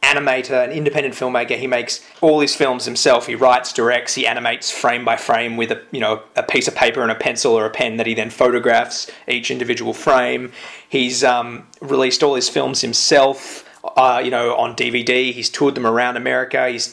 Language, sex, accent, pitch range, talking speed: English, male, Australian, 120-150 Hz, 200 wpm